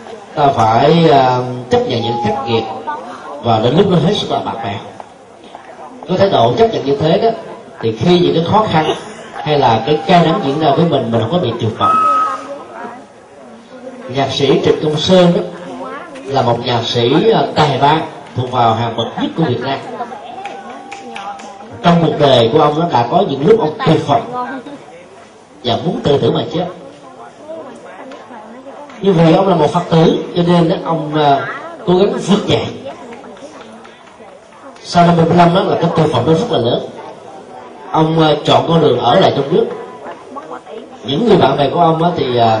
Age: 30-49